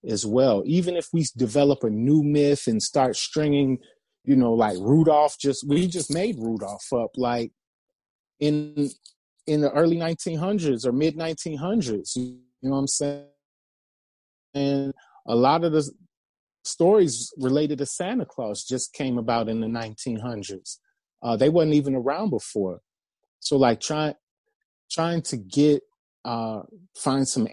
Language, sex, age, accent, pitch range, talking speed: English, male, 30-49, American, 115-150 Hz, 145 wpm